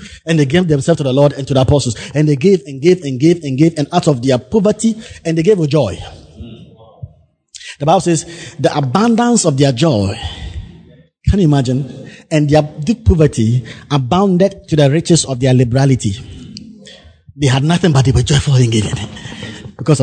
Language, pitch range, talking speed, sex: English, 110-155 Hz, 185 wpm, male